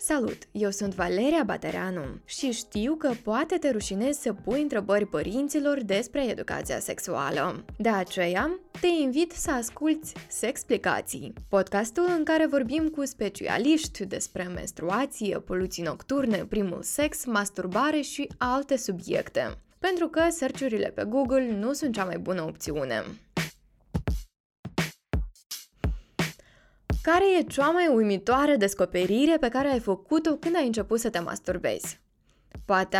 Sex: female